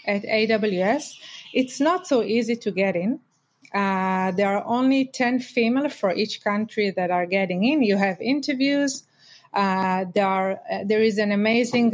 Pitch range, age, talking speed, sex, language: 195-240 Hz, 30-49, 165 wpm, female, English